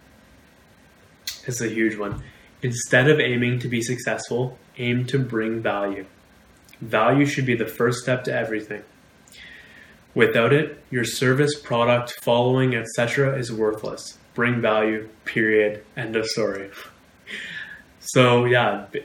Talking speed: 125 wpm